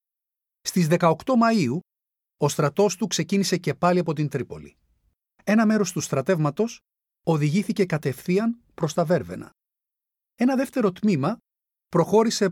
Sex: male